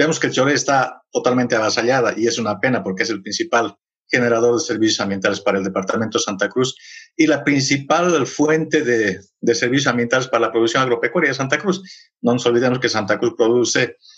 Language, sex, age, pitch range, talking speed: Spanish, male, 50-69, 120-160 Hz, 190 wpm